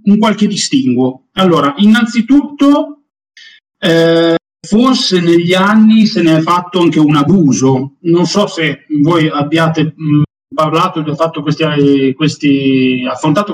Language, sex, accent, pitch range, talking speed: Italian, male, native, 145-170 Hz, 115 wpm